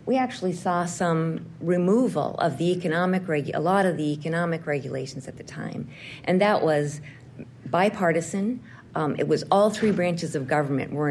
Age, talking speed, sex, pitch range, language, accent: 50-69, 160 wpm, female, 140-180 Hz, English, American